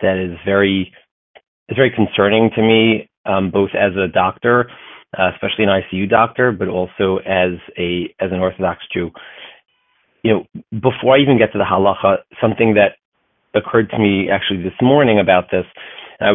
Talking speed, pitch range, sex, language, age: 170 wpm, 95-115 Hz, male, English, 30-49